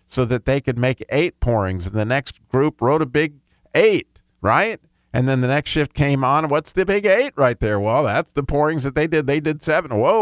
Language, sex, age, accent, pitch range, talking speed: English, male, 50-69, American, 115-155 Hz, 235 wpm